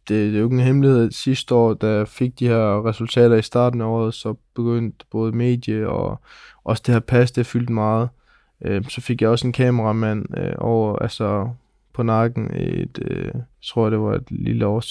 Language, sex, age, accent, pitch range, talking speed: Danish, male, 20-39, native, 110-120 Hz, 200 wpm